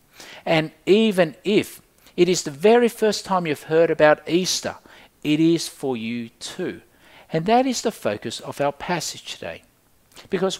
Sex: male